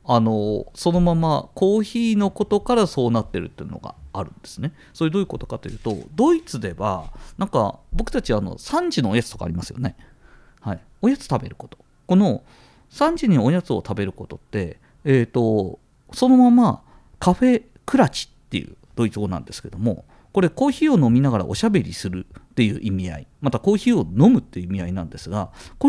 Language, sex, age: Japanese, male, 40-59